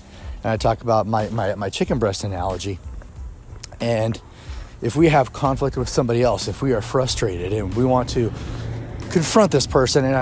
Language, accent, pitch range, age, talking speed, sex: English, American, 105-130 Hz, 30-49, 175 wpm, male